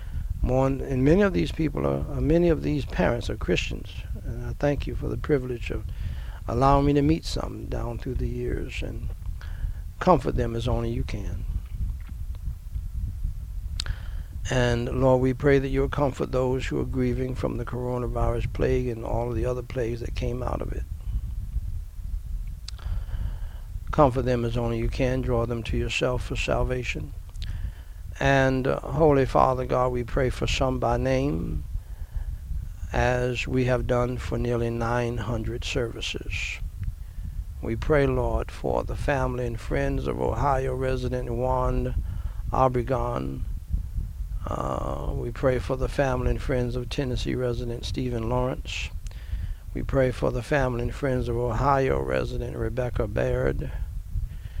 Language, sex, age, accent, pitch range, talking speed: English, male, 60-79, American, 85-125 Hz, 145 wpm